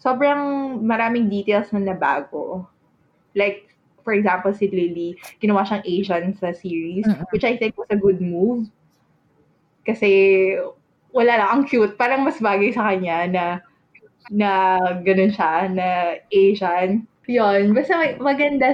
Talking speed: 130 wpm